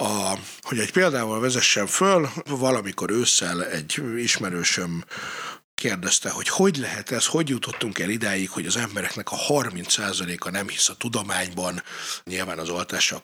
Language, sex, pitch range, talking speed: Hungarian, male, 110-155 Hz, 135 wpm